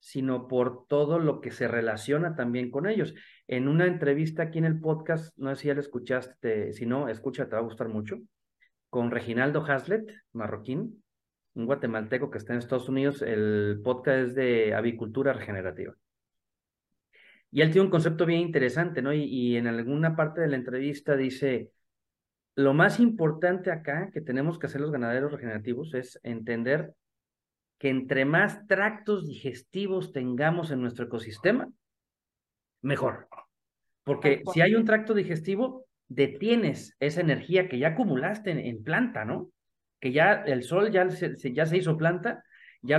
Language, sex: Spanish, male